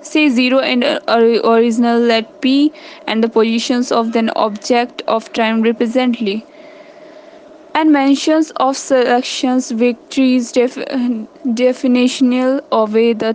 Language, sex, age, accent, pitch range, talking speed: English, female, 10-29, Indian, 225-275 Hz, 120 wpm